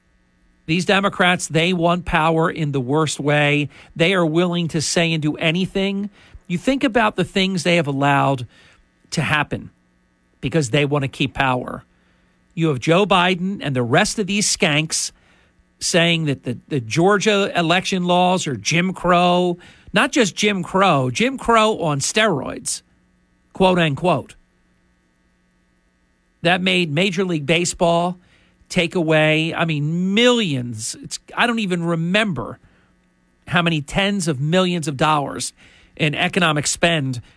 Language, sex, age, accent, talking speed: English, male, 50-69, American, 140 wpm